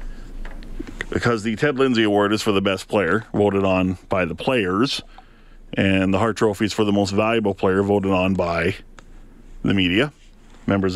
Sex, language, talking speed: male, English, 170 wpm